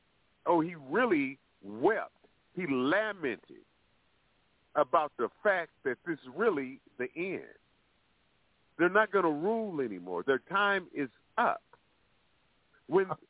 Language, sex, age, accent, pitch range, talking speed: English, male, 50-69, American, 170-240 Hz, 115 wpm